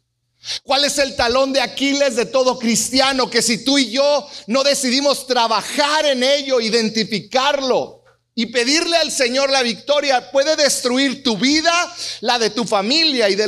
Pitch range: 175-275 Hz